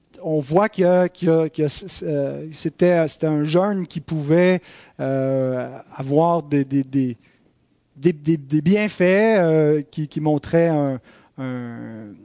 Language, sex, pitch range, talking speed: French, male, 150-185 Hz, 115 wpm